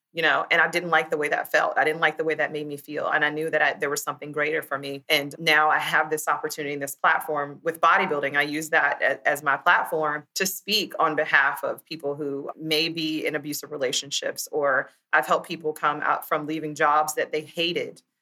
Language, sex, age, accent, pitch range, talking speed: English, female, 30-49, American, 155-185 Hz, 230 wpm